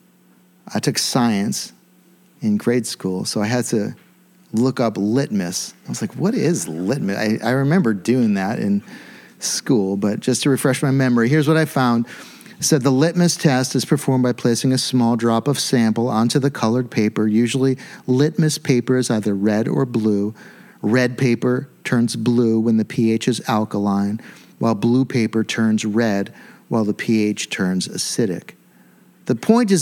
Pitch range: 120-180 Hz